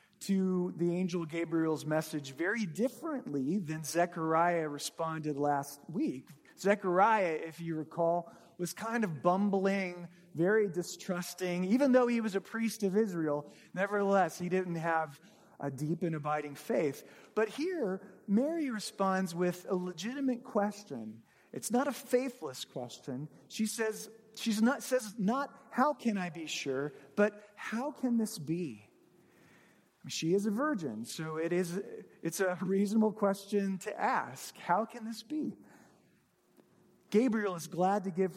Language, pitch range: English, 165-220 Hz